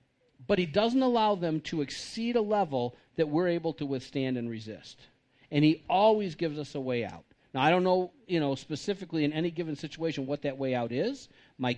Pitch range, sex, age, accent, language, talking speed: 140-180 Hz, male, 50-69, American, English, 210 wpm